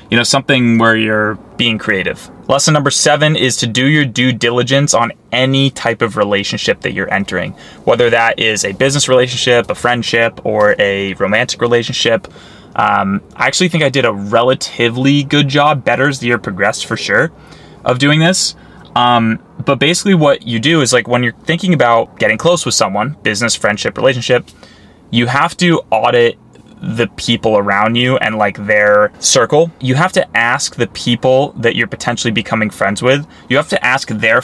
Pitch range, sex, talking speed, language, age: 115-140 Hz, male, 180 wpm, English, 20-39